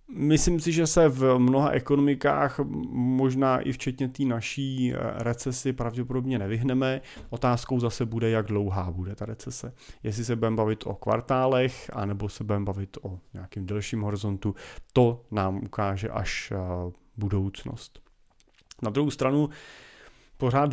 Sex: male